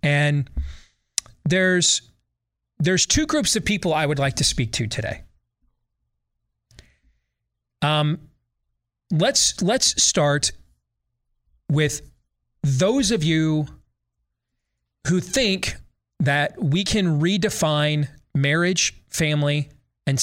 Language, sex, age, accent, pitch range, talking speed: English, male, 30-49, American, 120-160 Hz, 90 wpm